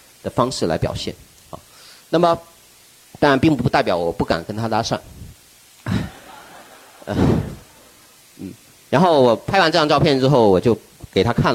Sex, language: male, Chinese